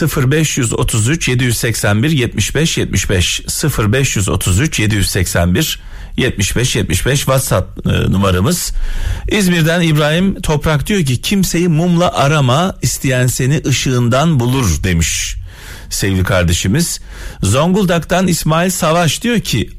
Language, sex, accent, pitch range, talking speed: Turkish, male, native, 100-155 Hz, 80 wpm